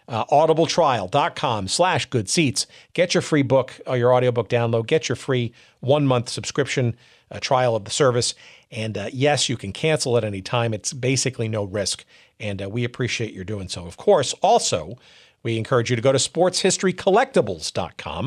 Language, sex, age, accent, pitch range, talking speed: English, male, 50-69, American, 115-140 Hz, 180 wpm